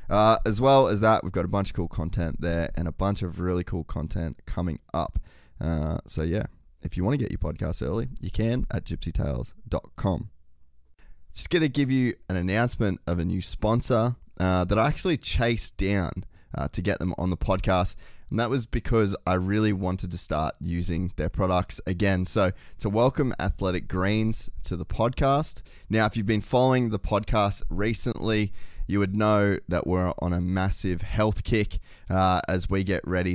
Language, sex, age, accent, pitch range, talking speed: English, male, 20-39, Australian, 90-110 Hz, 190 wpm